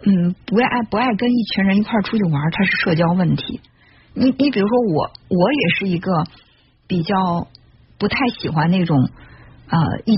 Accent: native